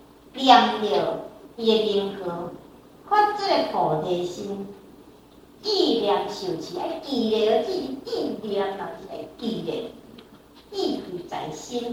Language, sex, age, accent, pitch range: Chinese, male, 50-69, American, 235-365 Hz